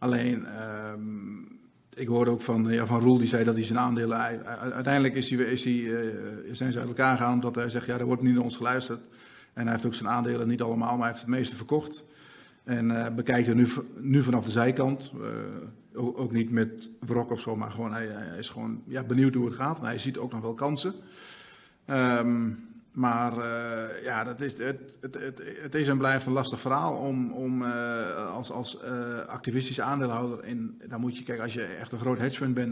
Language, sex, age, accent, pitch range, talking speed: Dutch, male, 40-59, Dutch, 120-135 Hz, 220 wpm